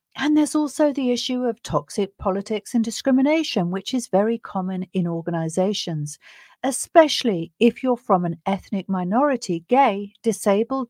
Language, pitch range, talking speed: English, 170-240 Hz, 140 wpm